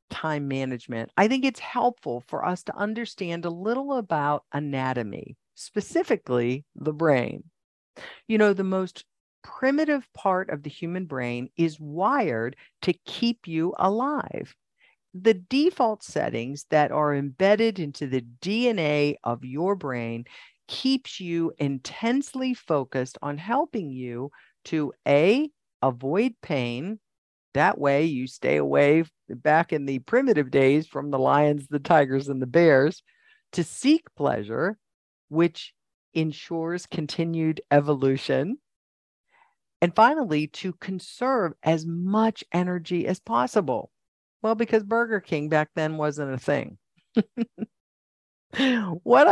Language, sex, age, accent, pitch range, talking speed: English, female, 50-69, American, 145-220 Hz, 120 wpm